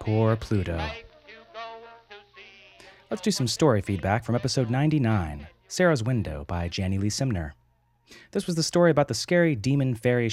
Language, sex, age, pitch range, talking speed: English, male, 30-49, 100-140 Hz, 140 wpm